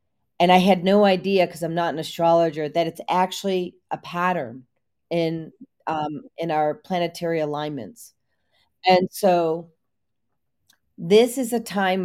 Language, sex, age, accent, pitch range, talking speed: English, female, 40-59, American, 175-235 Hz, 135 wpm